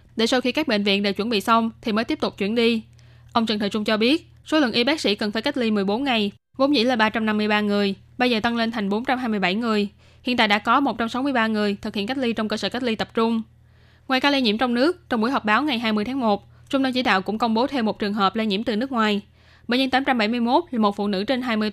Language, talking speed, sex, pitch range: Vietnamese, 280 wpm, female, 210-255 Hz